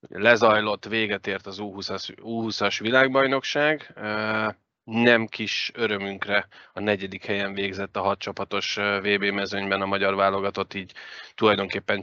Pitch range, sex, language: 95-110 Hz, male, Hungarian